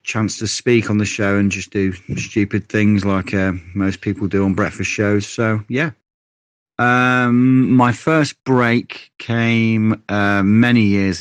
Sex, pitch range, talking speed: male, 95-110 Hz, 155 wpm